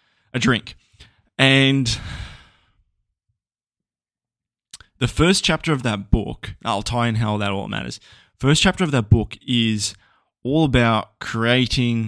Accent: Australian